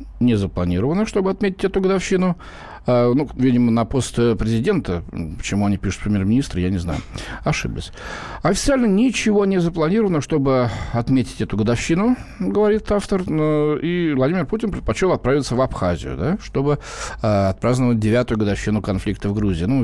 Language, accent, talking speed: Russian, native, 140 wpm